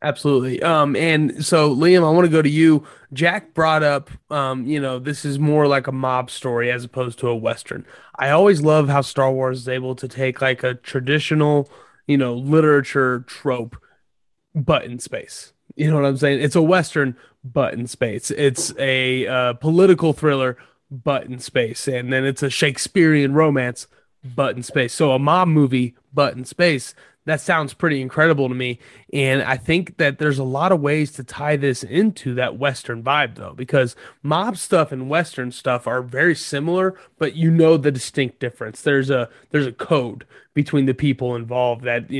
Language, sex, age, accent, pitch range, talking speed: English, male, 30-49, American, 130-155 Hz, 190 wpm